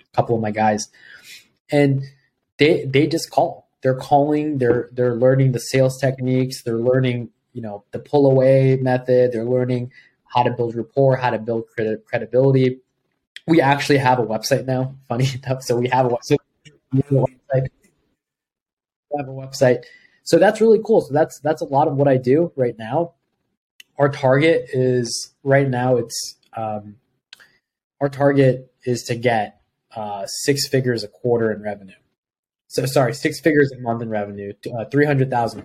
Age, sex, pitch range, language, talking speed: 20-39, male, 120-145 Hz, English, 160 wpm